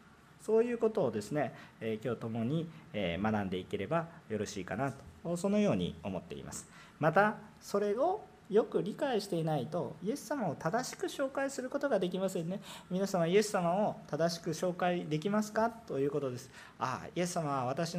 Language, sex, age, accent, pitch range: Japanese, male, 40-59, native, 120-180 Hz